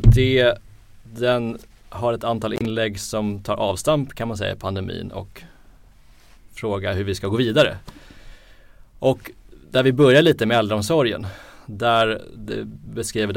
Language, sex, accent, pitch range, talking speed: Swedish, male, native, 100-120 Hz, 135 wpm